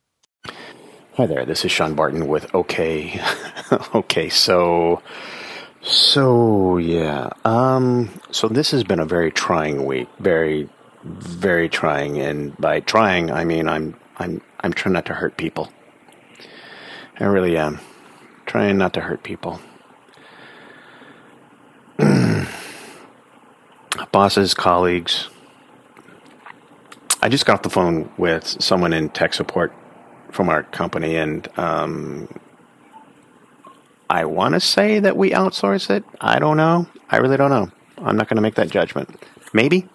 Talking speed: 130 wpm